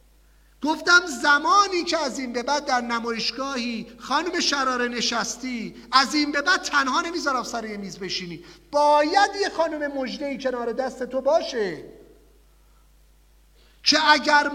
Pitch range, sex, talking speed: 255-335 Hz, male, 130 wpm